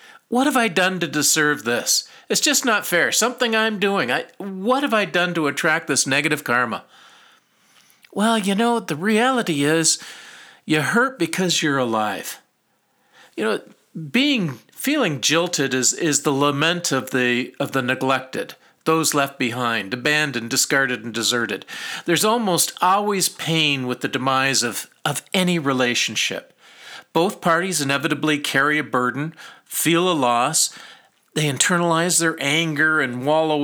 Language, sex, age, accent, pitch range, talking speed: English, male, 50-69, American, 135-180 Hz, 145 wpm